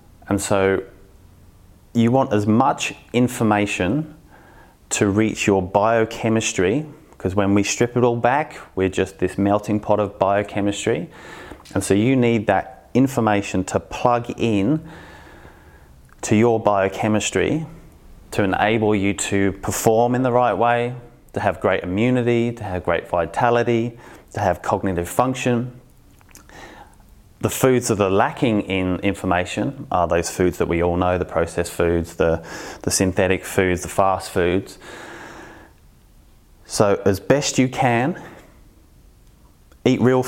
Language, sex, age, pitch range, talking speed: English, male, 30-49, 95-120 Hz, 135 wpm